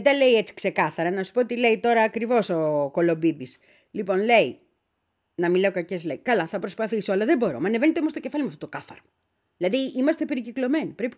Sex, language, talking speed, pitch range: female, Greek, 215 wpm, 190-295 Hz